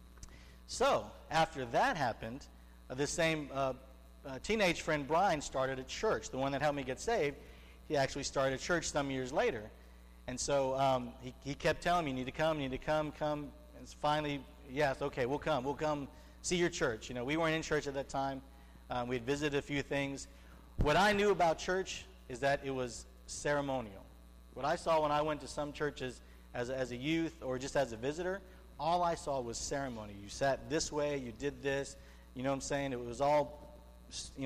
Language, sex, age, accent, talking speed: English, male, 50-69, American, 210 wpm